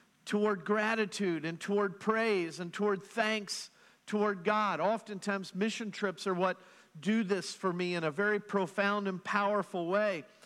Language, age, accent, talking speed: English, 50-69, American, 150 wpm